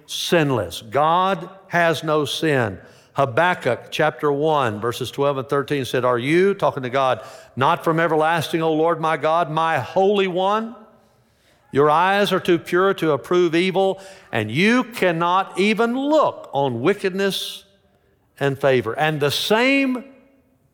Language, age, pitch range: English, 60-79, 120-170 Hz